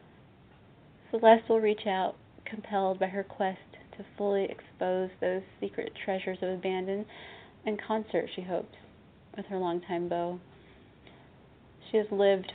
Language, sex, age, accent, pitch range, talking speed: English, female, 20-39, American, 175-200 Hz, 130 wpm